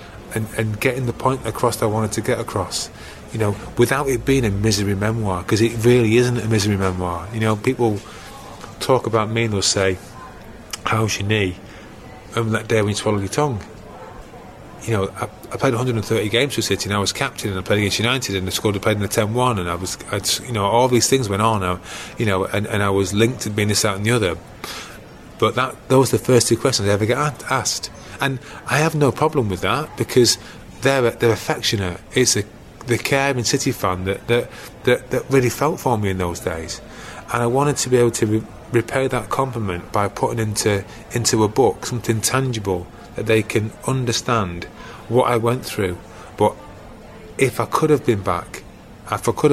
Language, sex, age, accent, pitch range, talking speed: English, male, 30-49, British, 100-120 Hz, 215 wpm